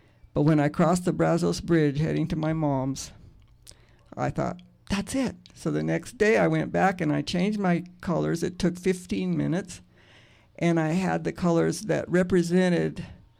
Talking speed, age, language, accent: 170 wpm, 60-79, English, American